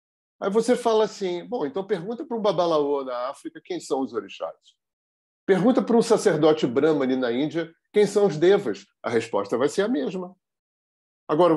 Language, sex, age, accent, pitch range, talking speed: Portuguese, male, 50-69, Brazilian, 145-225 Hz, 180 wpm